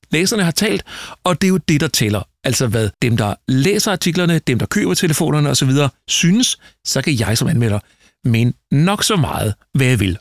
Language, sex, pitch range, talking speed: Danish, male, 120-165 Hz, 200 wpm